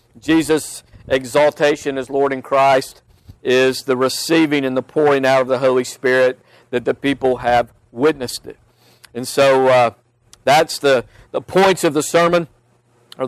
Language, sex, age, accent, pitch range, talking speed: English, male, 50-69, American, 125-160 Hz, 155 wpm